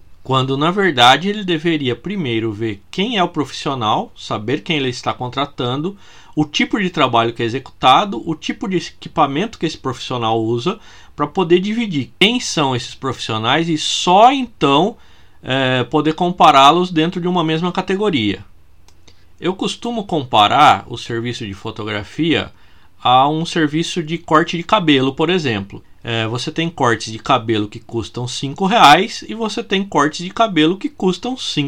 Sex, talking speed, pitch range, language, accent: male, 155 wpm, 115-180 Hz, Portuguese, Brazilian